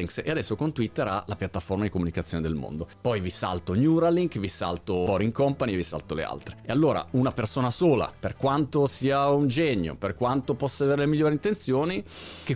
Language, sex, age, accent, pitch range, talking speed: Italian, male, 40-59, native, 95-140 Hz, 195 wpm